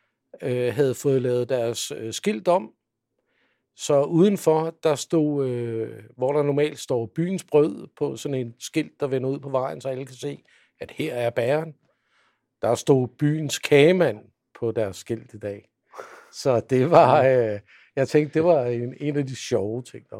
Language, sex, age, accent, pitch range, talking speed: Danish, male, 60-79, native, 115-155 Hz, 180 wpm